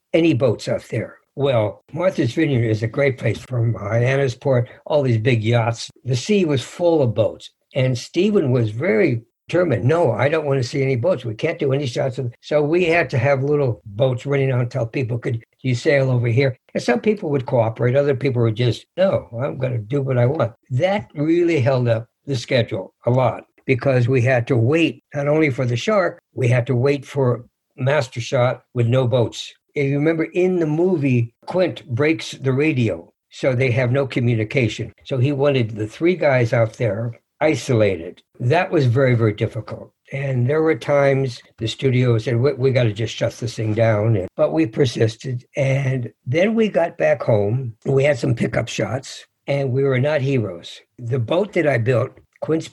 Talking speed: 200 wpm